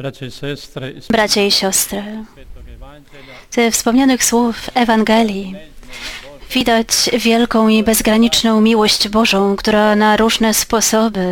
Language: Polish